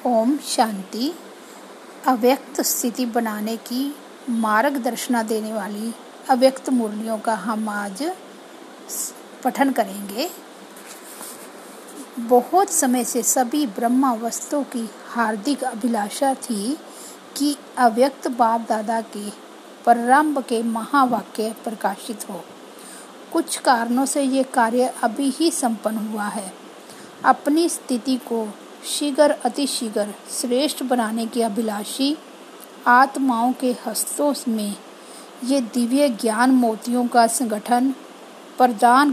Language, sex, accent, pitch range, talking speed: Hindi, female, native, 225-275 Hz, 100 wpm